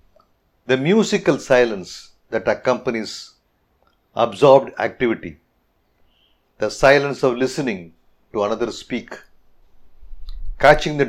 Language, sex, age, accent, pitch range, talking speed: English, male, 50-69, Indian, 95-135 Hz, 85 wpm